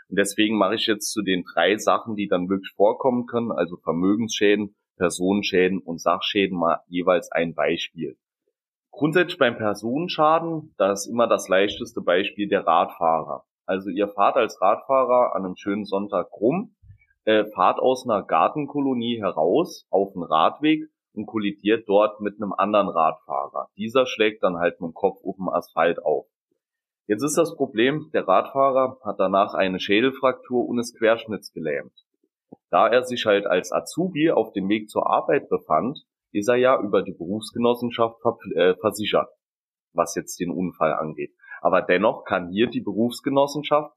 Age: 30-49